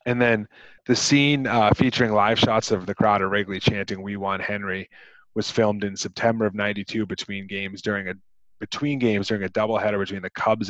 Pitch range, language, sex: 100-110 Hz, English, male